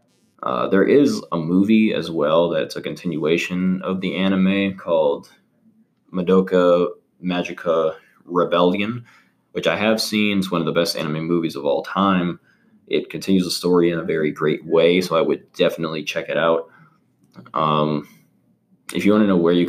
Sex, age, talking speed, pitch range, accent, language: male, 20-39, 170 wpm, 85-120 Hz, American, English